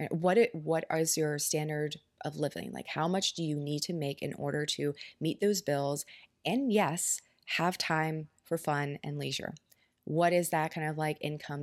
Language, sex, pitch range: English, female, 145-170 Hz